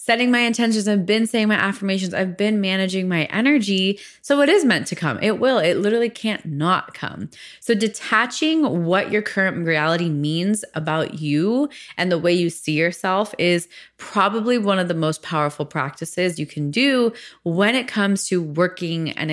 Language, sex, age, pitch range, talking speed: English, female, 20-39, 160-215 Hz, 180 wpm